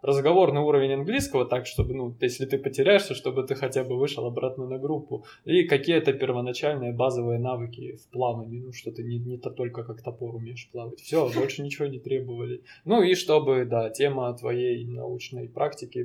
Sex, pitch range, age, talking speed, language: male, 115-135 Hz, 20-39, 180 wpm, Russian